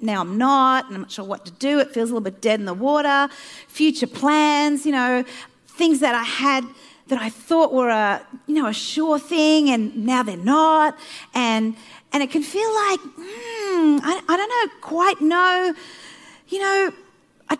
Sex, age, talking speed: female, 40-59, 195 wpm